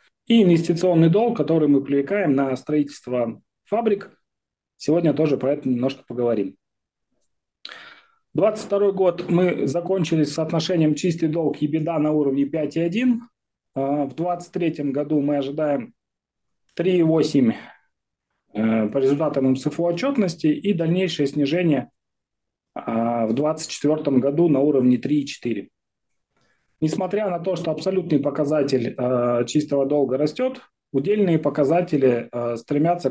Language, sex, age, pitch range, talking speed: Russian, male, 30-49, 135-170 Hz, 110 wpm